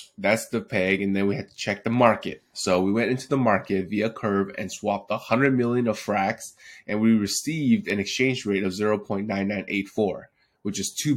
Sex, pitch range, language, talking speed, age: male, 95-115 Hz, English, 200 wpm, 20-39